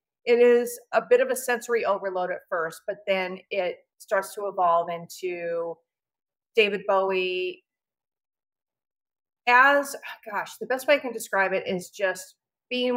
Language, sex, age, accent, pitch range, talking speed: English, female, 40-59, American, 175-230 Hz, 145 wpm